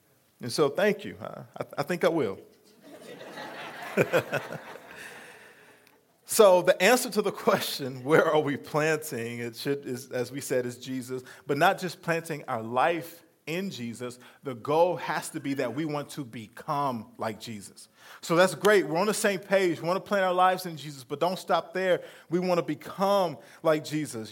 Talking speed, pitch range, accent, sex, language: 180 wpm, 140-180 Hz, American, male, English